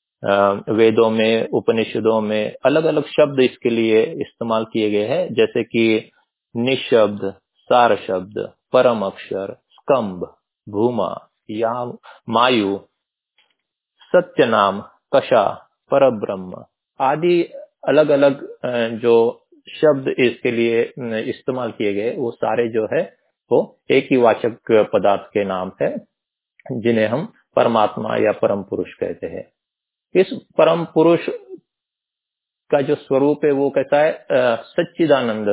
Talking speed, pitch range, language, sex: 120 wpm, 110-150 Hz, Hindi, male